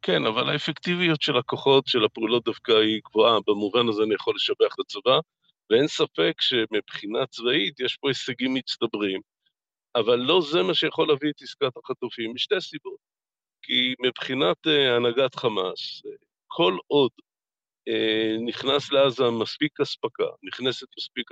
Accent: native